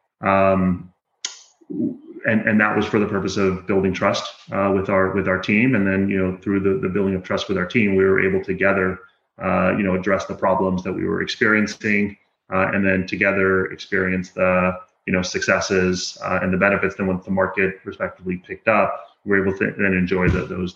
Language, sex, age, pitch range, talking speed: English, male, 30-49, 95-100 Hz, 210 wpm